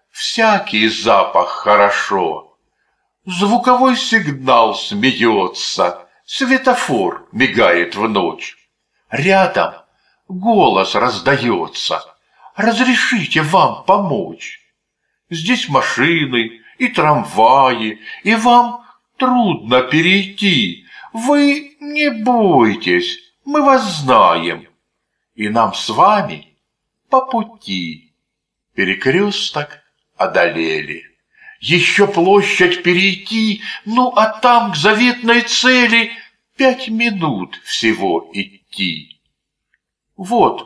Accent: native